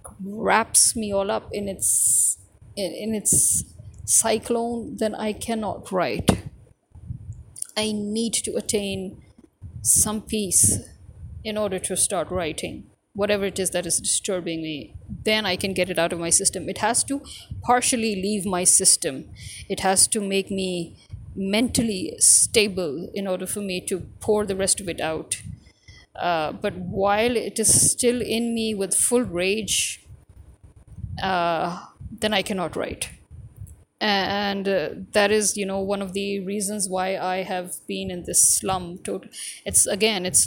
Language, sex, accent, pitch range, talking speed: English, female, Indian, 180-215 Hz, 150 wpm